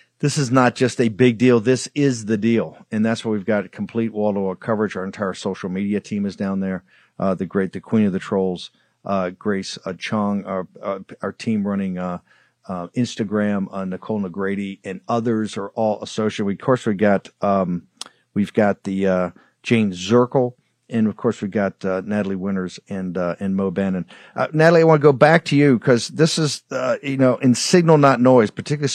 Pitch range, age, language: 100-130 Hz, 50-69, English